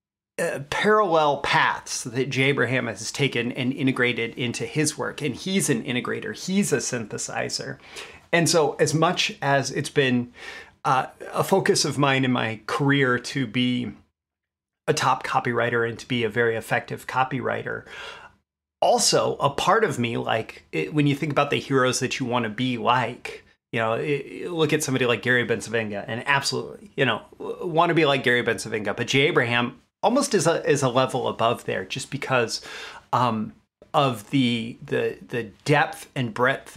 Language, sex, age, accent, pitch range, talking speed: English, male, 30-49, American, 115-145 Hz, 170 wpm